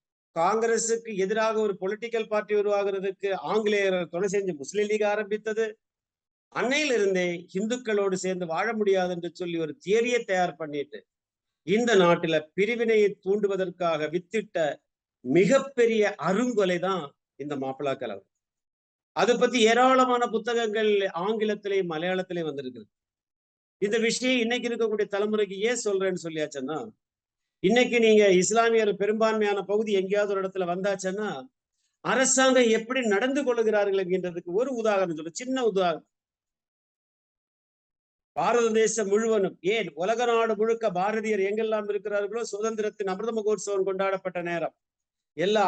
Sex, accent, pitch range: male, native, 180-220 Hz